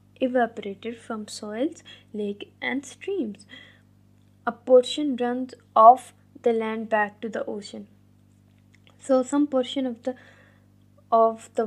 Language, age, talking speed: English, 10-29, 120 wpm